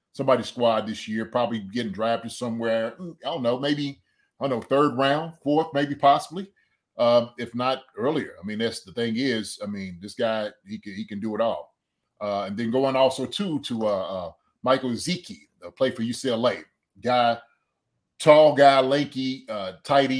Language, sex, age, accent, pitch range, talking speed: English, male, 30-49, American, 115-140 Hz, 185 wpm